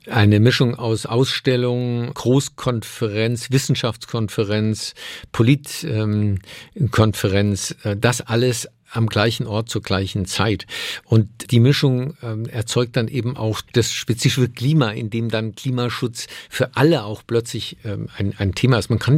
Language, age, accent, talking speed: German, 50-69, German, 130 wpm